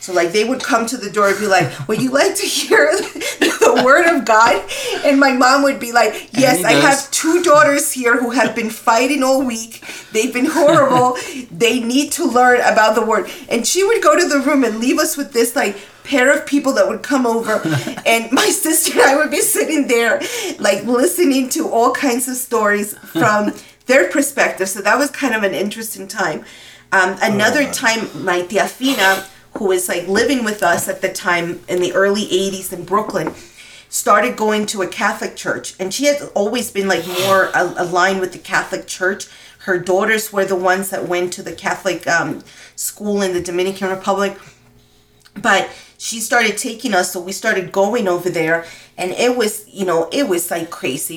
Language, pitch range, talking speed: English, 190-270 Hz, 200 wpm